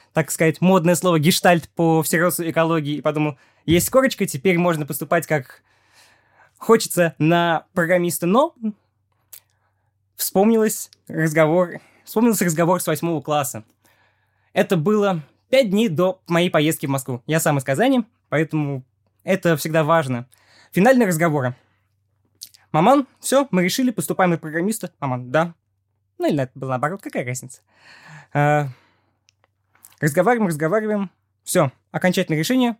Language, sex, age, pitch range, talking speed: Russian, male, 20-39, 115-185 Hz, 200 wpm